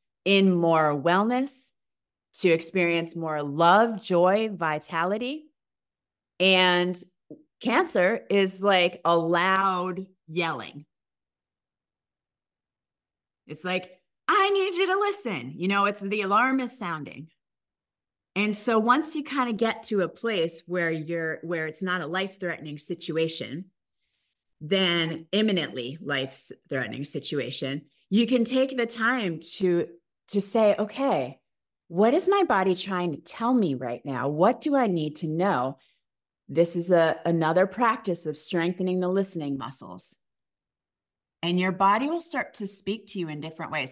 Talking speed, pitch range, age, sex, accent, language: 135 wpm, 155-200 Hz, 30-49, female, American, English